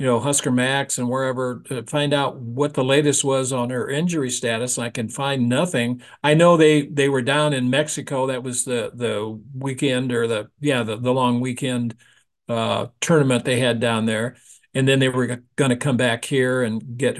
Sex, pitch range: male, 120-145 Hz